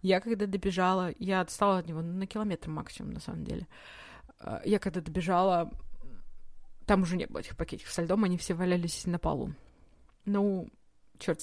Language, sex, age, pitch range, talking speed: Russian, female, 20-39, 175-205 Hz, 165 wpm